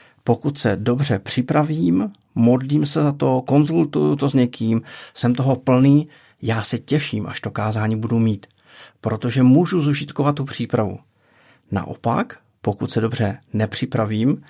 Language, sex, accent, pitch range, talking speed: Czech, male, native, 110-135 Hz, 135 wpm